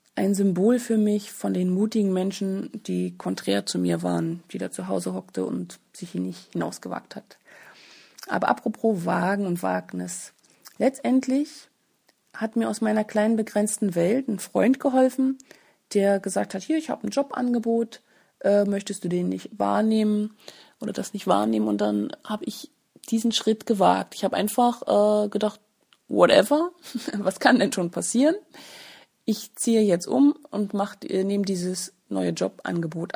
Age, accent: 30-49, German